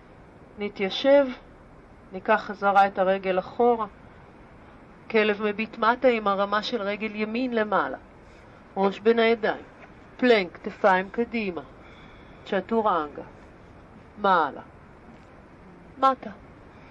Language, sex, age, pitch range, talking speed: Hebrew, female, 50-69, 185-230 Hz, 85 wpm